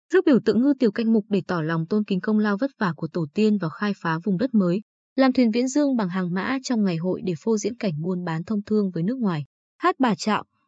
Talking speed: 275 wpm